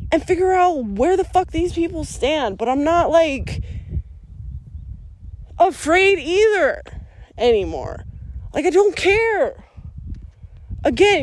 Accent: American